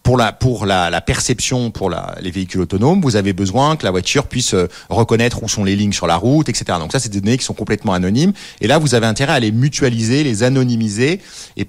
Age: 30-49